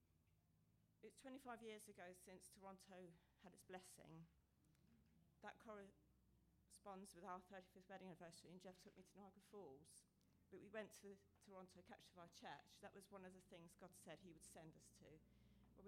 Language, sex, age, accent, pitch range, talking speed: English, female, 40-59, British, 160-200 Hz, 180 wpm